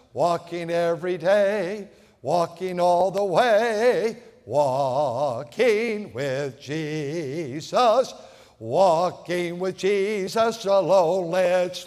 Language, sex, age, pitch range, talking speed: English, male, 60-79, 170-235 Hz, 75 wpm